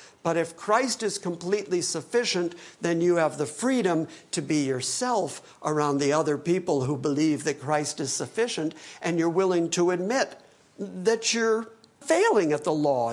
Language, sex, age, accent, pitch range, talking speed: English, male, 60-79, American, 160-205 Hz, 160 wpm